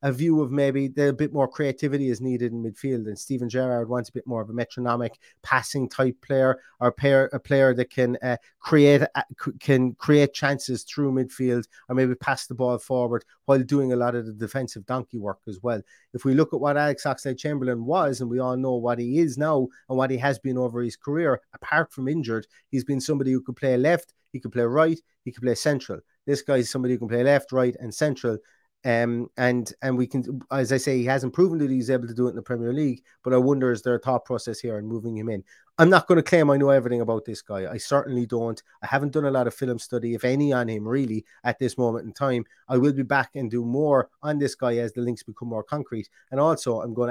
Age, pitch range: 30-49, 120-140 Hz